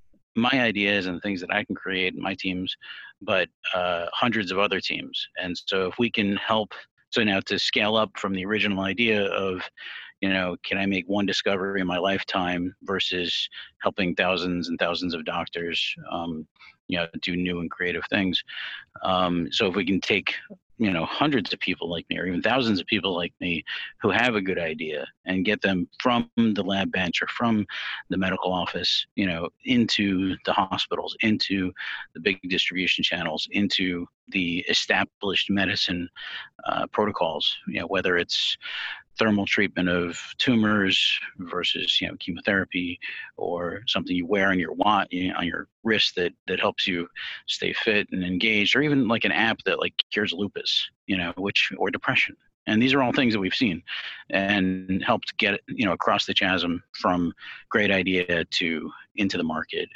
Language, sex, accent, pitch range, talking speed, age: English, male, American, 90-100 Hz, 175 wpm, 40-59